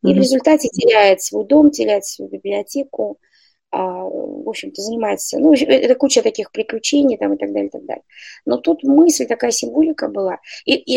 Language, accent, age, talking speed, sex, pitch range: Russian, native, 20-39, 175 wpm, female, 215-300 Hz